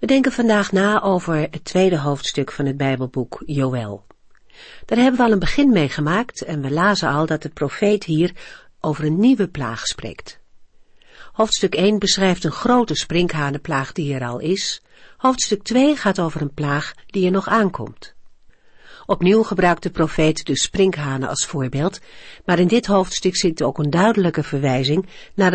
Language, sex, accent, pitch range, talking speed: Dutch, female, Dutch, 145-210 Hz, 165 wpm